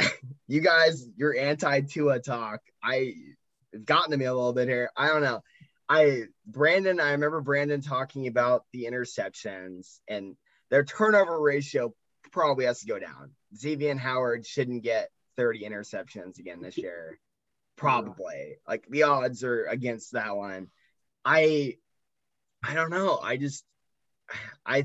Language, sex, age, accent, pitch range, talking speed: English, male, 20-39, American, 115-145 Hz, 145 wpm